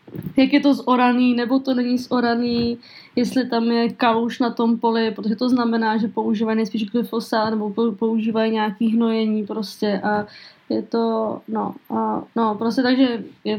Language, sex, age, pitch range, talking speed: Czech, female, 20-39, 225-245 Hz, 165 wpm